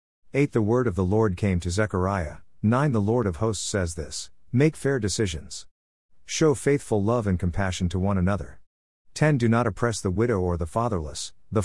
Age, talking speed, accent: 50-69, 190 wpm, American